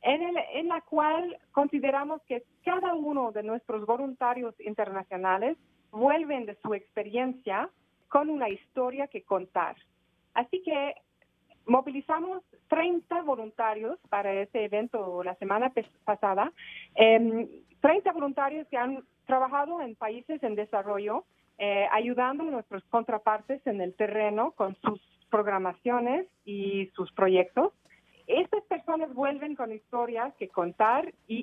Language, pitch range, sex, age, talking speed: Spanish, 210-280 Hz, female, 40-59, 120 wpm